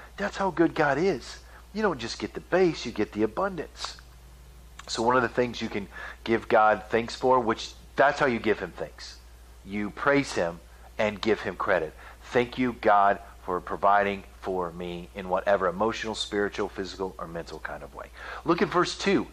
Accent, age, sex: American, 40-59, male